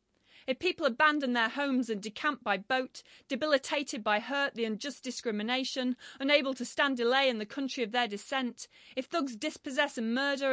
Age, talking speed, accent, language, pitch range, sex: 40-59, 170 wpm, British, English, 225-280 Hz, female